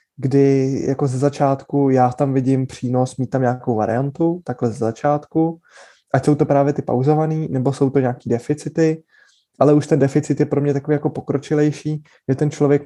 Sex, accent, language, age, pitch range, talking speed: male, native, Czech, 20-39, 130-145 Hz, 180 wpm